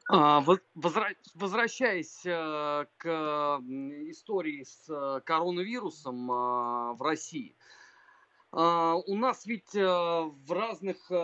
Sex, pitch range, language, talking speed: male, 165-230 Hz, Russian, 70 wpm